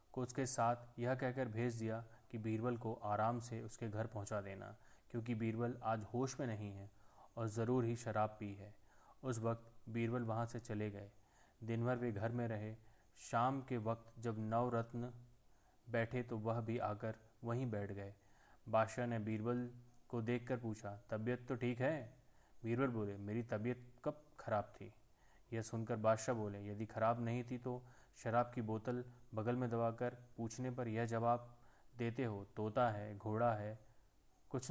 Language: Hindi